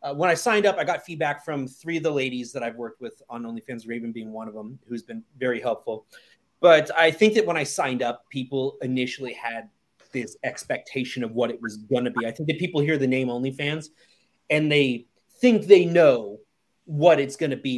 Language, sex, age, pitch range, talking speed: English, male, 30-49, 130-180 Hz, 225 wpm